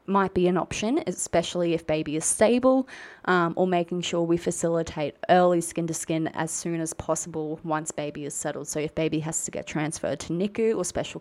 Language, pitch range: English, 160-210 Hz